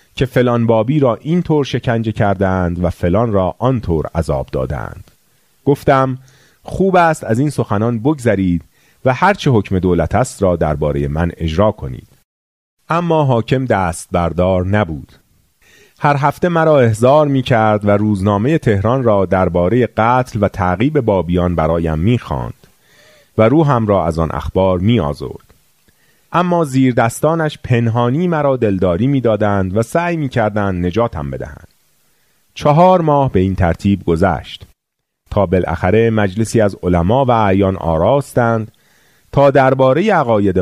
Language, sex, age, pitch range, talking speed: Persian, male, 40-59, 95-135 Hz, 135 wpm